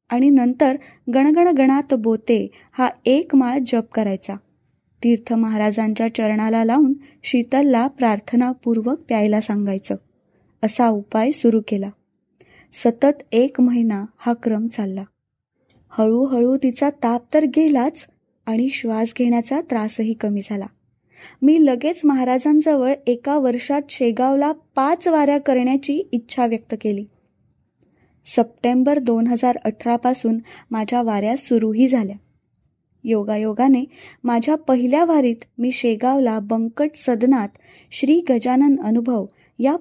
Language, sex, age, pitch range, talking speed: Marathi, female, 20-39, 220-270 Hz, 100 wpm